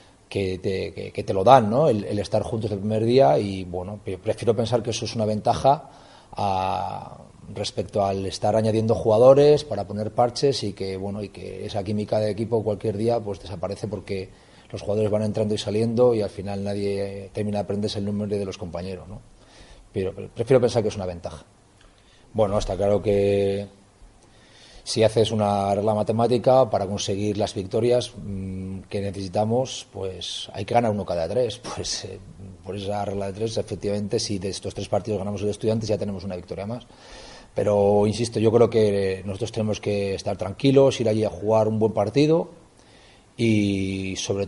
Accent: Spanish